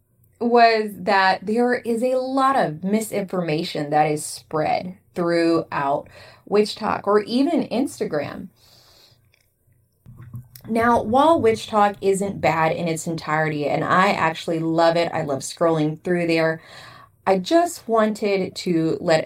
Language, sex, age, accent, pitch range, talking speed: English, female, 20-39, American, 160-215 Hz, 130 wpm